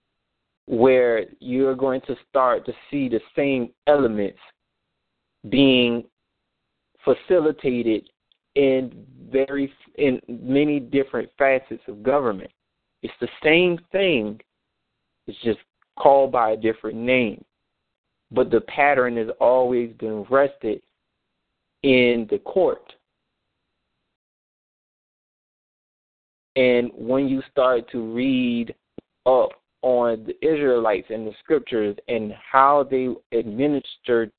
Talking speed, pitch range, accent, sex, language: 100 wpm, 115-140 Hz, American, male, English